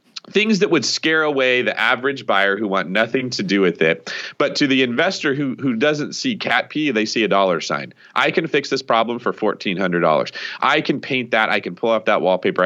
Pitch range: 95-130 Hz